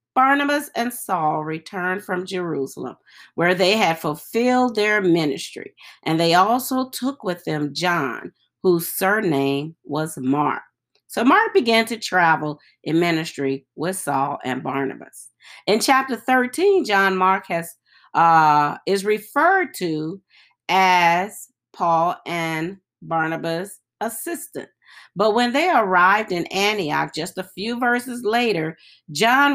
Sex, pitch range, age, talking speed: female, 165-230 Hz, 40-59, 125 wpm